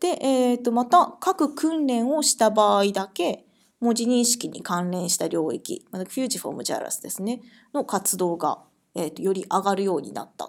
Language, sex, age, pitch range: Japanese, female, 20-39, 195-270 Hz